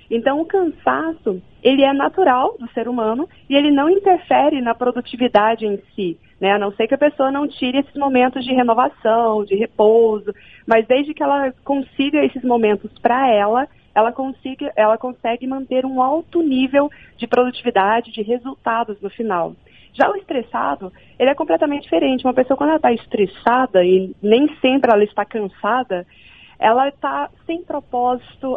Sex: female